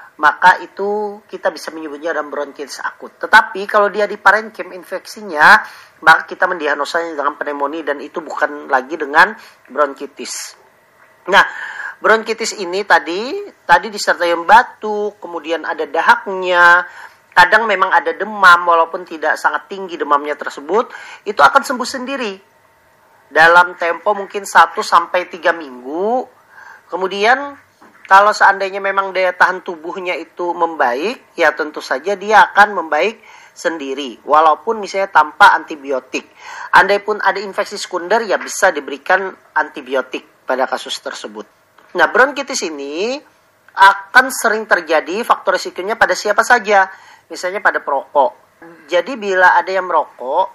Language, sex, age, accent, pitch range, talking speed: Indonesian, male, 40-59, native, 170-215 Hz, 125 wpm